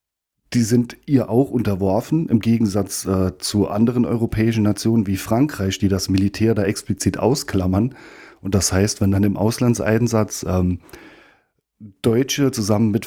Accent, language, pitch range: German, German, 100-120 Hz